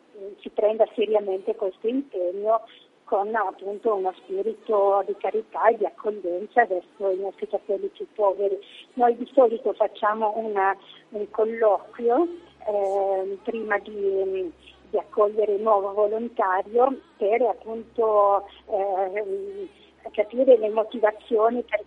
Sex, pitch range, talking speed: female, 200-255 Hz, 115 wpm